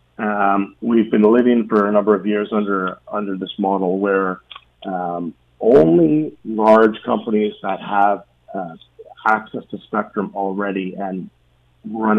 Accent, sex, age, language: American, male, 40-59, English